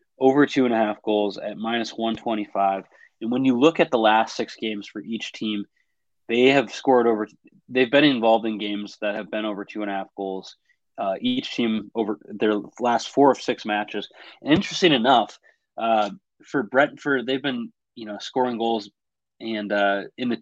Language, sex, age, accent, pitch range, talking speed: English, male, 20-39, American, 105-120 Hz, 175 wpm